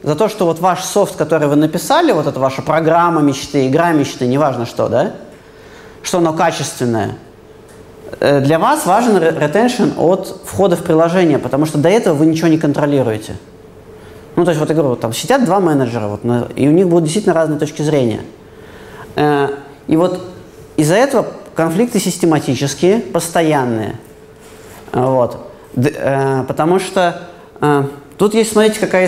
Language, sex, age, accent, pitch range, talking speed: Russian, male, 30-49, native, 150-195 Hz, 145 wpm